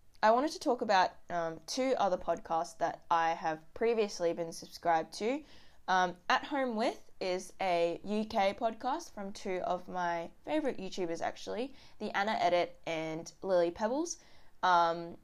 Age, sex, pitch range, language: 10-29, female, 170-220 Hz, English